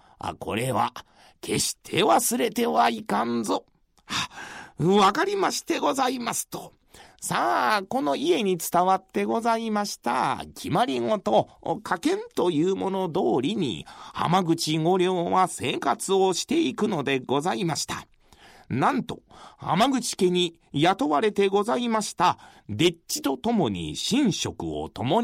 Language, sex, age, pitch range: Japanese, male, 40-59, 160-245 Hz